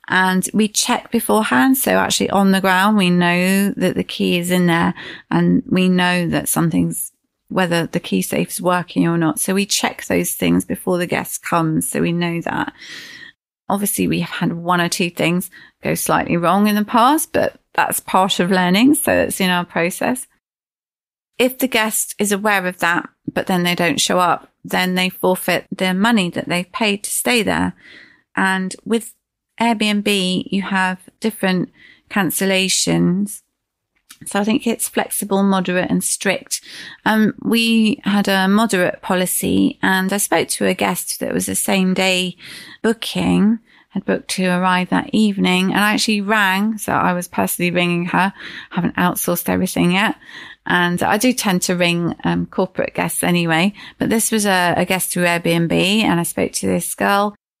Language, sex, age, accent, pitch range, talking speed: English, female, 30-49, British, 175-210 Hz, 175 wpm